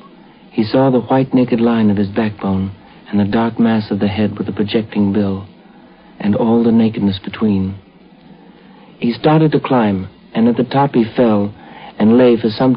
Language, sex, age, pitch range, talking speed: English, male, 60-79, 105-115 Hz, 185 wpm